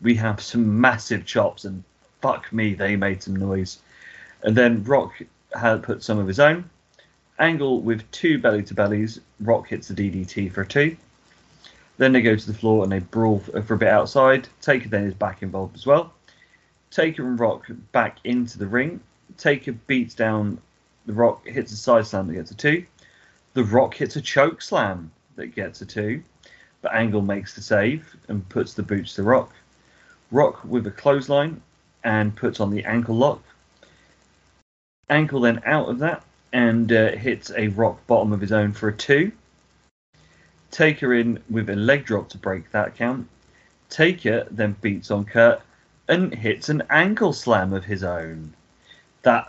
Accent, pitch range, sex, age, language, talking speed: British, 100-125 Hz, male, 30-49, English, 175 wpm